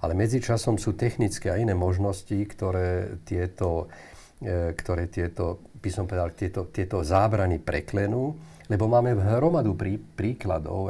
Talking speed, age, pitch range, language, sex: 115 wpm, 50-69, 90-105 Hz, Slovak, male